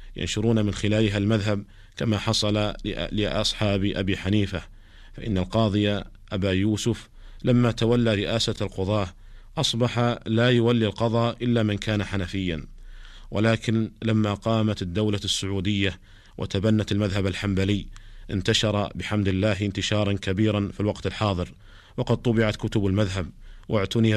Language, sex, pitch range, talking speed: Arabic, male, 100-110 Hz, 115 wpm